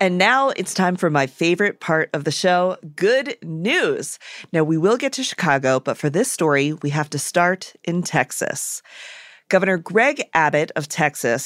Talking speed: 180 wpm